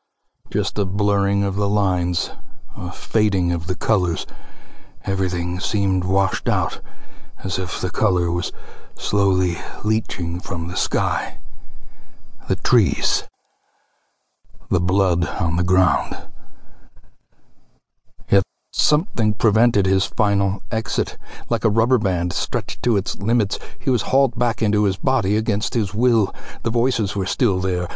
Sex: male